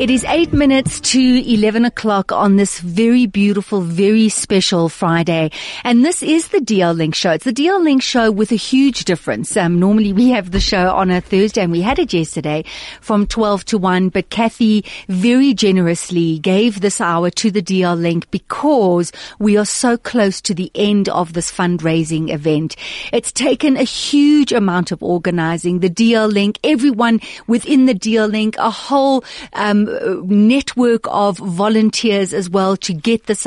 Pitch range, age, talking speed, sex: 185-240 Hz, 40-59, 175 wpm, female